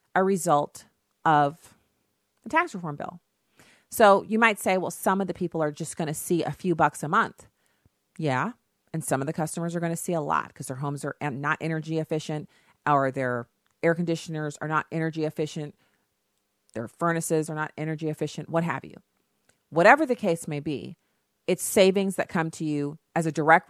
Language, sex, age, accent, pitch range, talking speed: English, female, 40-59, American, 140-180 Hz, 190 wpm